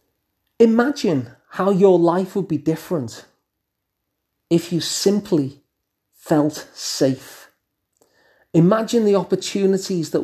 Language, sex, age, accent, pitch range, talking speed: English, male, 40-59, British, 145-180 Hz, 95 wpm